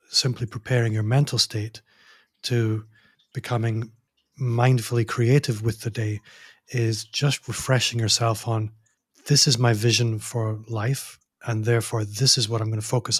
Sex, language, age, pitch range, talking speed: male, English, 30-49, 110-125 Hz, 145 wpm